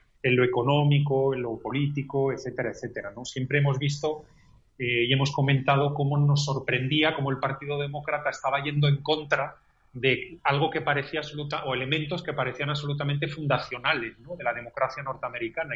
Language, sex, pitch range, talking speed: Spanish, male, 135-165 Hz, 165 wpm